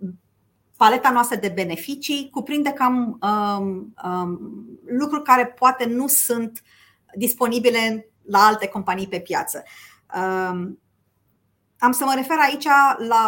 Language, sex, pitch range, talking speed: Romanian, female, 190-260 Hz, 105 wpm